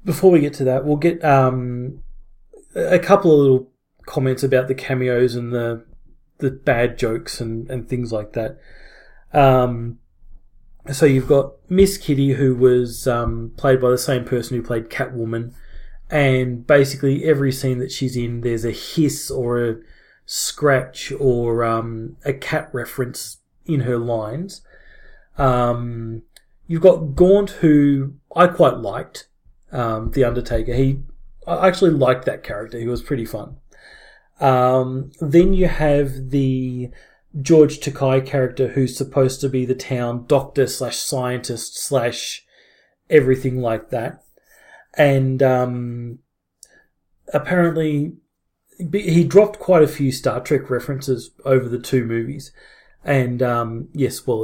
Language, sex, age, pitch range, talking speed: English, male, 30-49, 120-145 Hz, 140 wpm